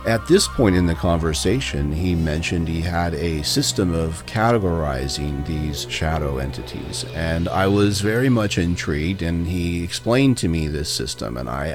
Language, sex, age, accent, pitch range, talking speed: English, male, 40-59, American, 80-105 Hz, 165 wpm